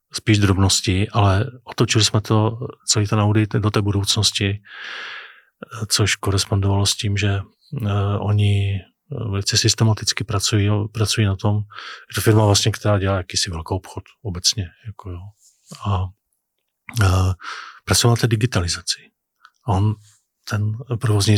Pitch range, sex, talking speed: 100-115 Hz, male, 130 wpm